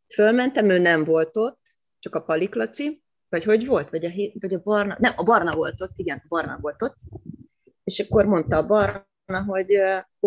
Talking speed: 195 wpm